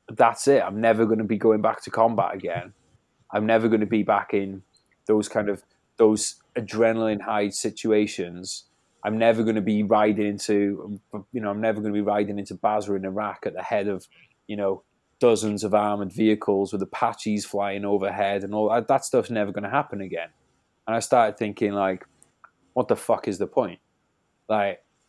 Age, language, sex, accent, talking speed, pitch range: 20-39, English, male, British, 195 wpm, 105-120 Hz